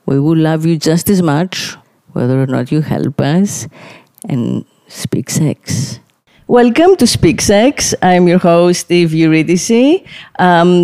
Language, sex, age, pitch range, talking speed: English, female, 40-59, 150-190 Hz, 145 wpm